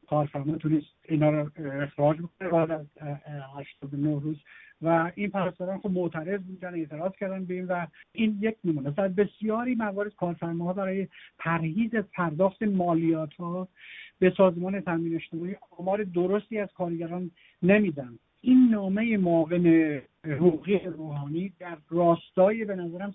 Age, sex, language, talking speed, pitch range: 60-79, male, Persian, 130 wpm, 155-185 Hz